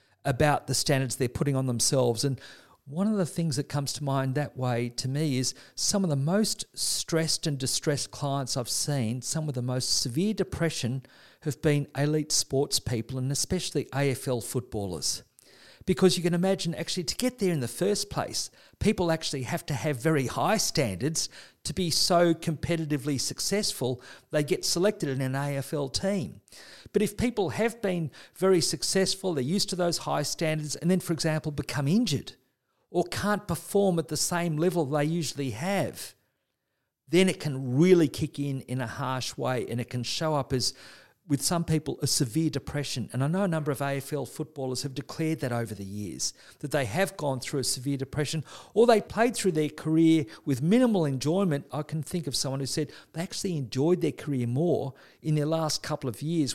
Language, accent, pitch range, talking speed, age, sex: English, Australian, 130-170 Hz, 190 wpm, 50-69, male